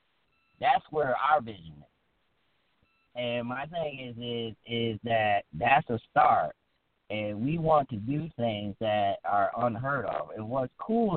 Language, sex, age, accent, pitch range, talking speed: English, male, 30-49, American, 100-125 Hz, 150 wpm